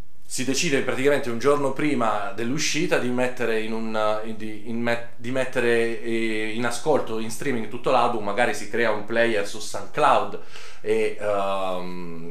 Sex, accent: male, native